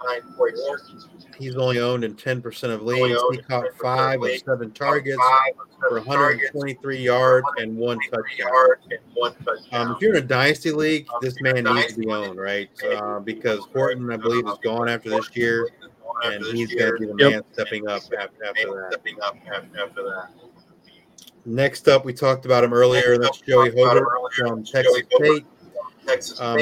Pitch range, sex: 125-160 Hz, male